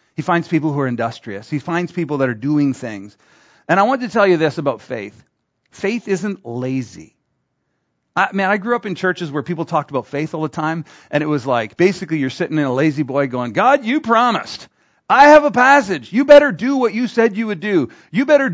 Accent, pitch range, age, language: American, 140-200 Hz, 40-59, English